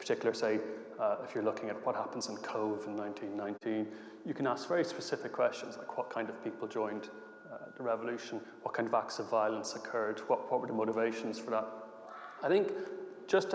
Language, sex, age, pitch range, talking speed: English, male, 30-49, 110-125 Hz, 200 wpm